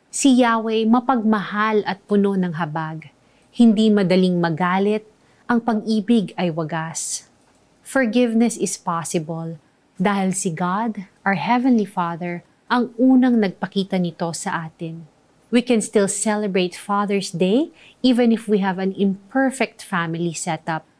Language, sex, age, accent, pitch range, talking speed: Filipino, female, 30-49, native, 170-220 Hz, 120 wpm